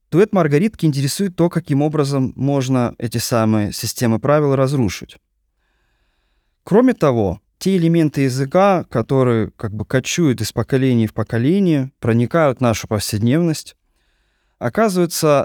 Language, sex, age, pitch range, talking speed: Russian, male, 20-39, 115-155 Hz, 115 wpm